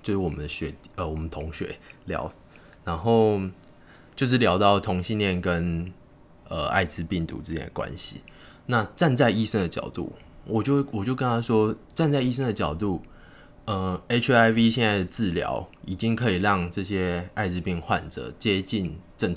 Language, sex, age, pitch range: Chinese, male, 20-39, 90-120 Hz